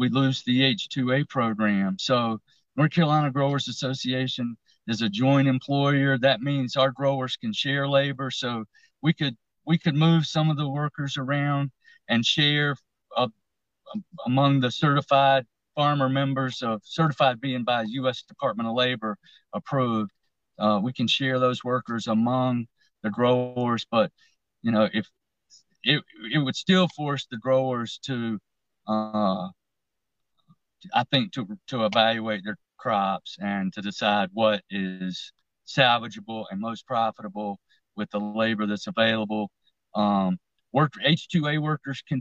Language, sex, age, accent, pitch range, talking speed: English, male, 50-69, American, 110-140 Hz, 140 wpm